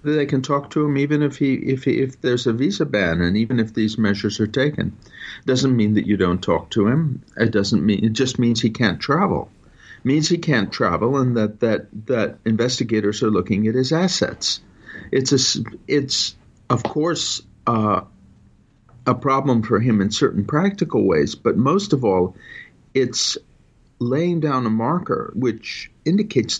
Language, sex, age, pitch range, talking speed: English, male, 50-69, 110-140 Hz, 175 wpm